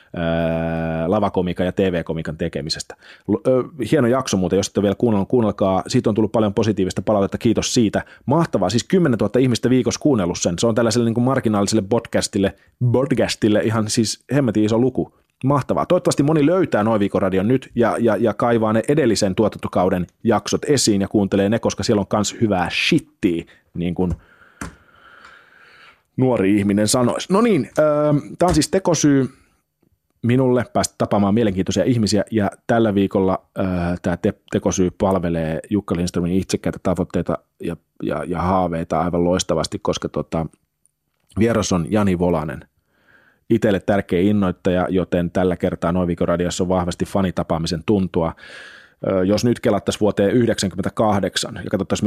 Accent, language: native, Finnish